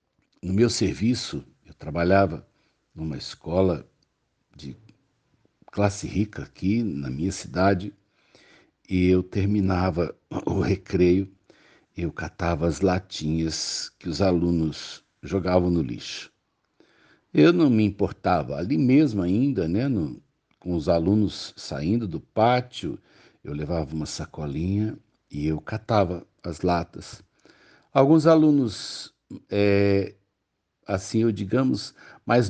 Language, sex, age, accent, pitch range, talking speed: Portuguese, male, 60-79, Brazilian, 90-115 Hz, 105 wpm